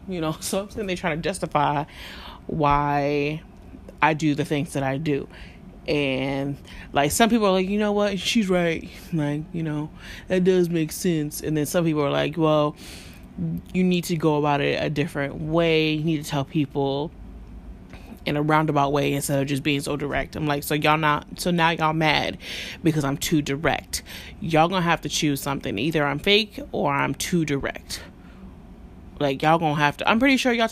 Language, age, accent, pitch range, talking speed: English, 20-39, American, 145-205 Hz, 195 wpm